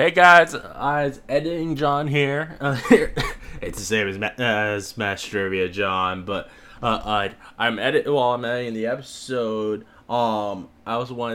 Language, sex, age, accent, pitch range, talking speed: English, male, 20-39, American, 105-135 Hz, 175 wpm